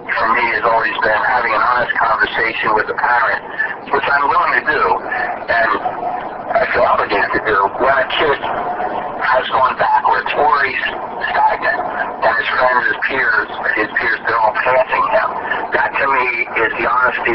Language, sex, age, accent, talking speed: English, male, 50-69, American, 165 wpm